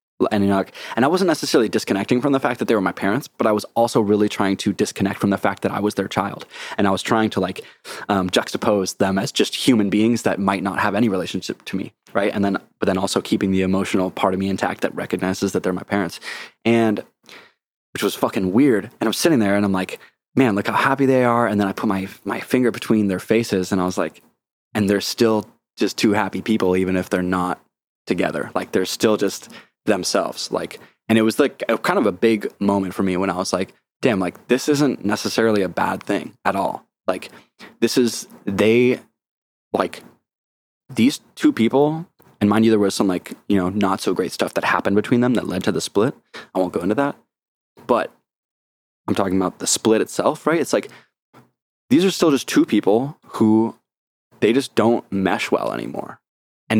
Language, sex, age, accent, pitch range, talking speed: English, male, 20-39, American, 95-115 Hz, 220 wpm